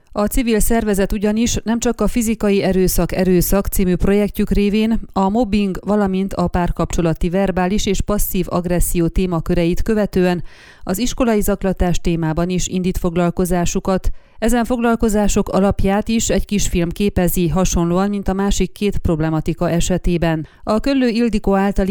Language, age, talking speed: Hungarian, 30-49, 135 wpm